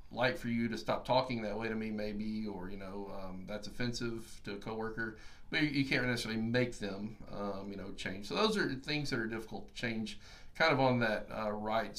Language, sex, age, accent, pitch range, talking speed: English, male, 40-59, American, 105-130 Hz, 225 wpm